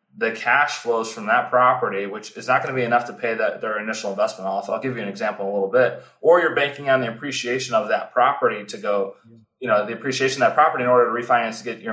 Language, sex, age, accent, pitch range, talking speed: English, male, 20-39, American, 120-150 Hz, 270 wpm